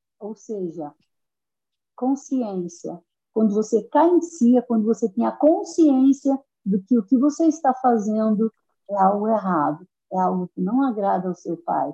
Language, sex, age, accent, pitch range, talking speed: Portuguese, female, 50-69, Brazilian, 195-280 Hz, 155 wpm